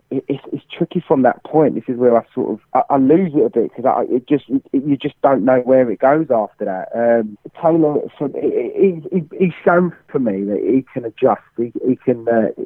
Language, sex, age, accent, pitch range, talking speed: English, male, 30-49, British, 110-140 Hz, 220 wpm